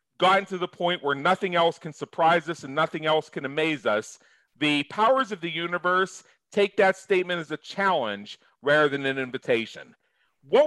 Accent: American